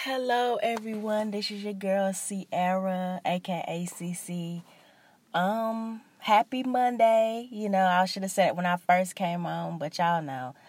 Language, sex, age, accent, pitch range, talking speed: English, female, 20-39, American, 160-205 Hz, 150 wpm